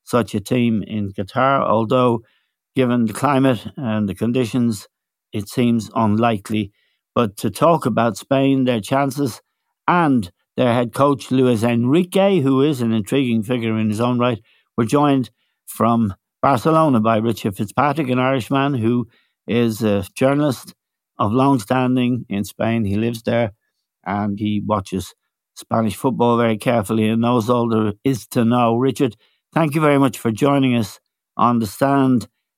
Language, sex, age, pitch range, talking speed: English, male, 60-79, 115-135 Hz, 155 wpm